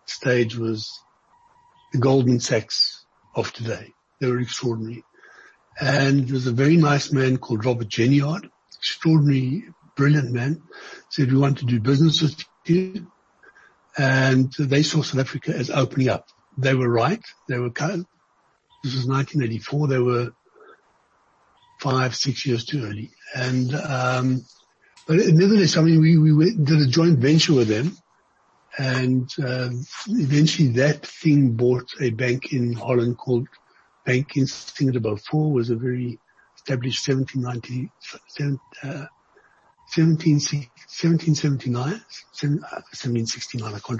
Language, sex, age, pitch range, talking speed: English, male, 60-79, 125-150 Hz, 130 wpm